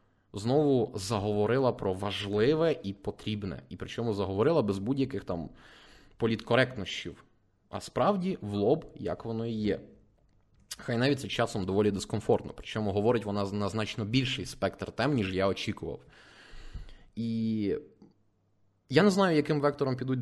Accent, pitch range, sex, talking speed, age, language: native, 100-140 Hz, male, 135 wpm, 20-39, Ukrainian